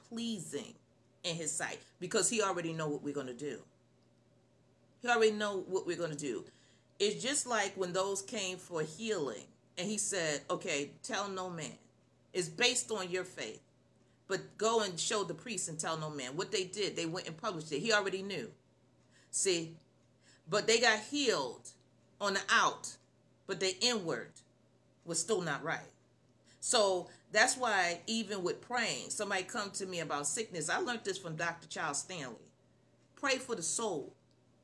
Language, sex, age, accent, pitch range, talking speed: English, female, 40-59, American, 155-220 Hz, 175 wpm